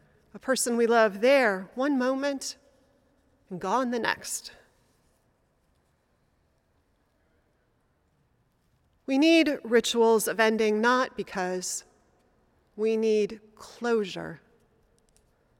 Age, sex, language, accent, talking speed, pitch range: 30-49, female, English, American, 80 wpm, 210-275 Hz